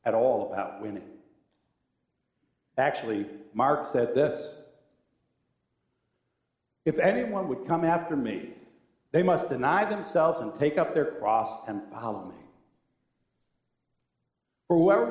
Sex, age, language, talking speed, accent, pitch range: male, 60-79, English, 110 wpm, American, 195-275 Hz